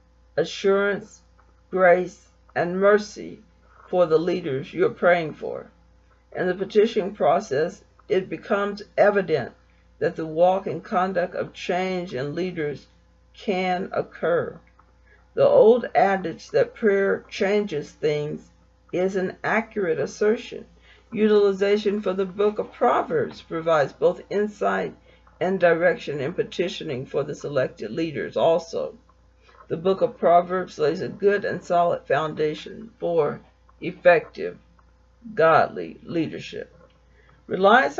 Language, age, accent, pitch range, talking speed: English, 60-79, American, 165-205 Hz, 115 wpm